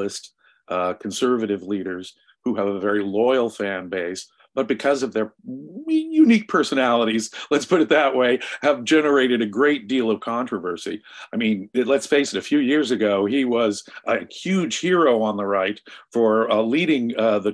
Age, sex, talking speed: 50-69, male, 170 wpm